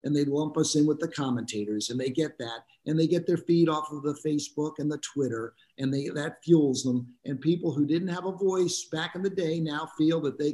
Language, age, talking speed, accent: English, 50-69, 250 wpm, American